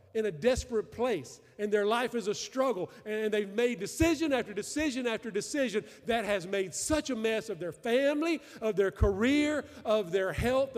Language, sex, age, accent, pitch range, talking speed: English, male, 50-69, American, 150-220 Hz, 185 wpm